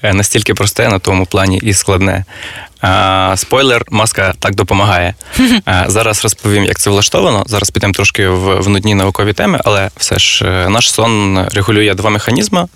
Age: 20-39